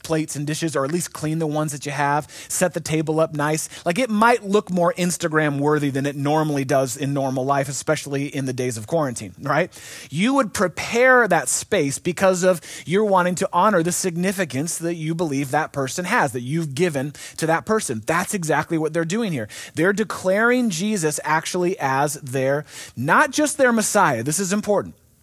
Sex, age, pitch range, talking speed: male, 30-49, 145-190 Hz, 195 wpm